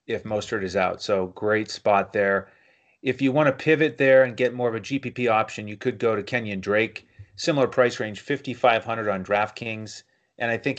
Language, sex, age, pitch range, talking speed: English, male, 30-49, 100-130 Hz, 200 wpm